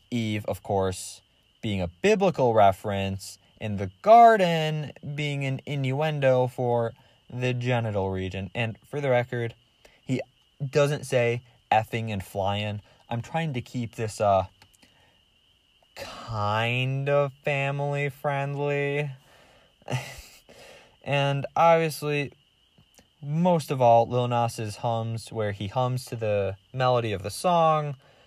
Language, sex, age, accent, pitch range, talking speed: English, male, 20-39, American, 105-135 Hz, 115 wpm